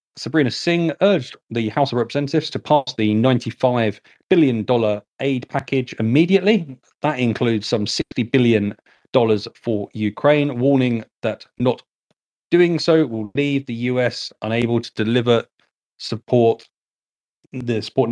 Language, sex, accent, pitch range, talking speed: English, male, British, 115-145 Hz, 125 wpm